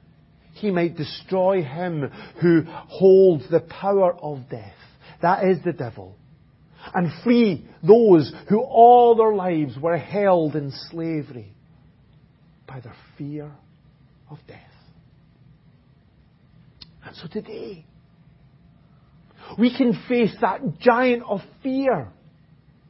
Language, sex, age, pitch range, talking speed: English, male, 40-59, 150-225 Hz, 105 wpm